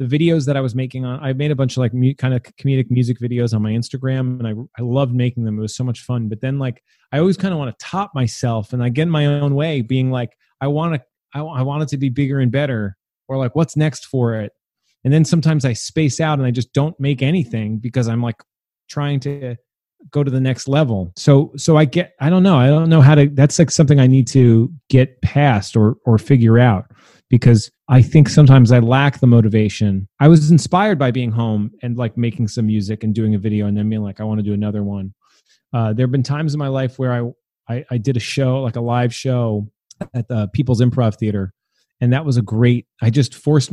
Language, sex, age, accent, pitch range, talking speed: English, male, 30-49, American, 115-140 Hz, 245 wpm